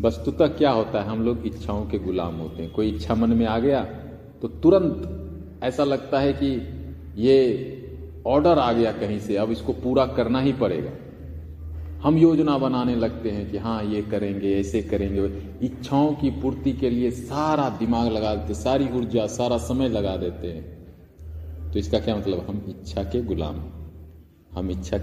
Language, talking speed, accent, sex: Hindi, 175 wpm, native, male